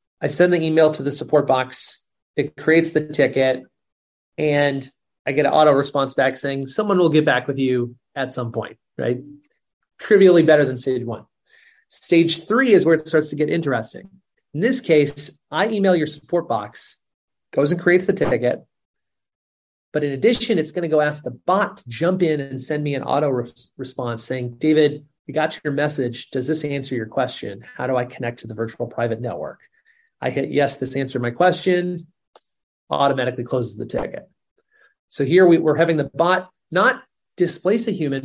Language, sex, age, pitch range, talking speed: English, male, 30-49, 130-170 Hz, 185 wpm